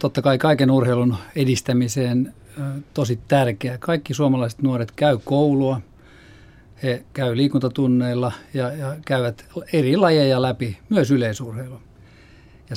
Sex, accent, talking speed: male, native, 115 wpm